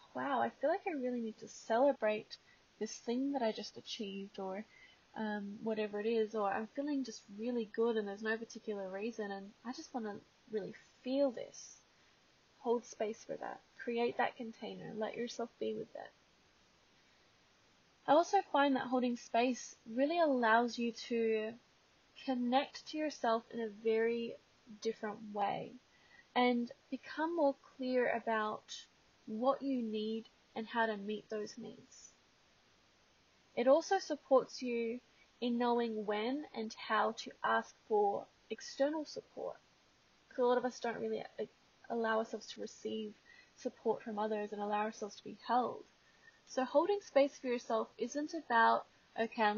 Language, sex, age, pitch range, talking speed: English, female, 10-29, 215-260 Hz, 150 wpm